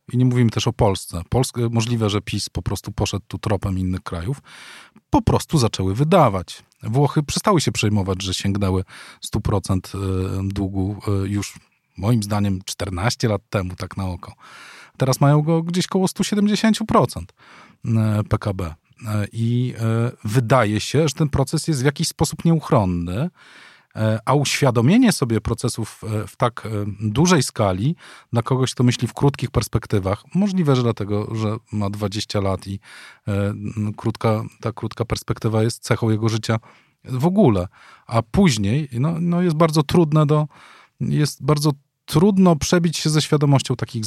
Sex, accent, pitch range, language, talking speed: male, native, 105-145 Hz, Polish, 140 wpm